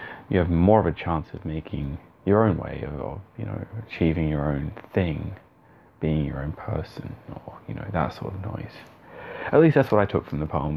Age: 30-49